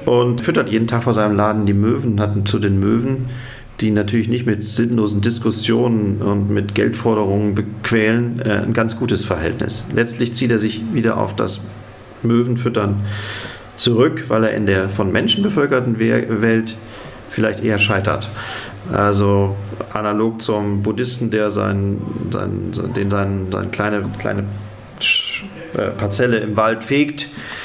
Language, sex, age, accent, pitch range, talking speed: German, male, 40-59, German, 100-115 Hz, 145 wpm